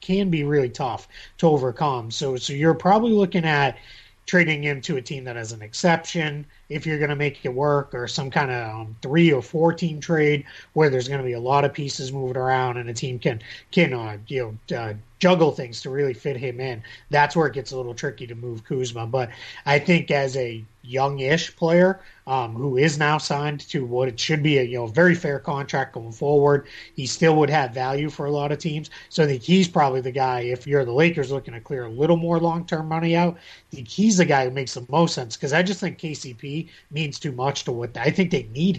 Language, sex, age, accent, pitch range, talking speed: English, male, 30-49, American, 125-160 Hz, 240 wpm